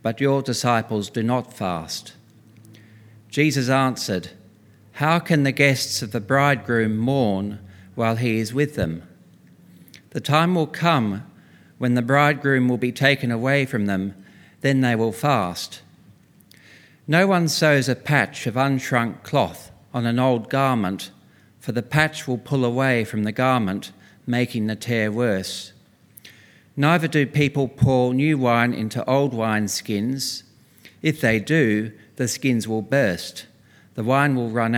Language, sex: English, male